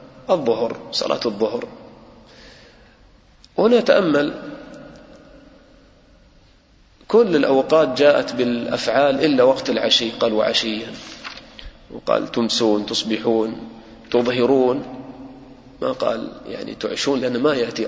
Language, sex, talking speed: English, male, 80 wpm